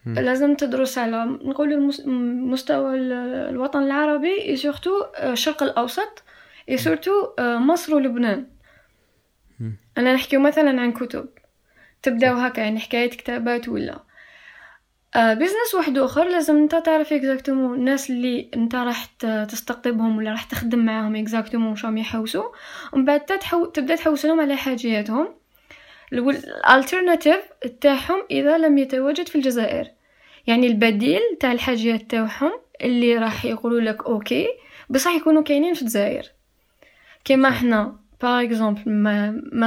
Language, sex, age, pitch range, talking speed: Arabic, female, 10-29, 235-295 Hz, 120 wpm